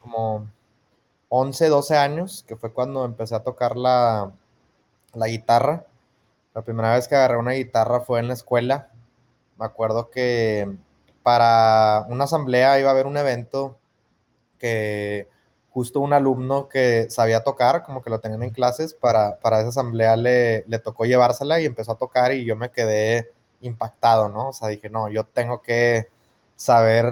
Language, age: Spanish, 20-39